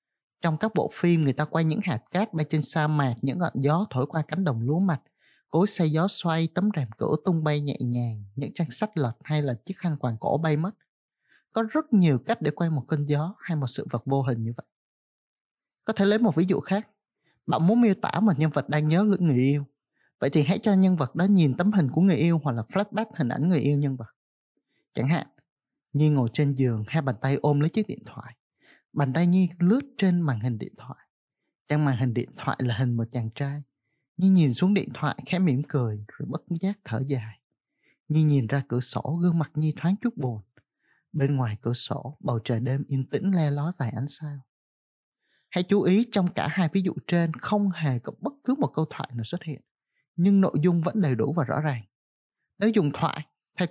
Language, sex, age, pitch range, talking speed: Vietnamese, male, 20-39, 130-180 Hz, 230 wpm